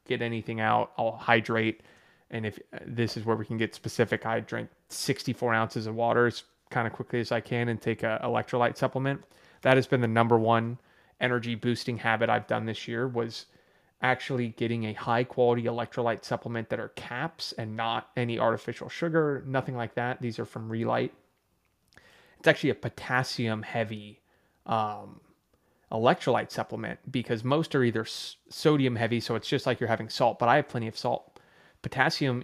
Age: 30-49